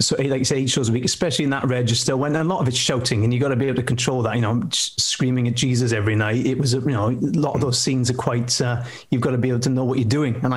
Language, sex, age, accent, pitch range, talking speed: English, male, 30-49, British, 120-140 Hz, 330 wpm